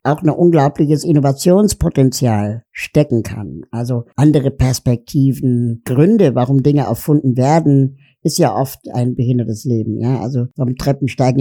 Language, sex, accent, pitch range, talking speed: German, male, German, 125-150 Hz, 125 wpm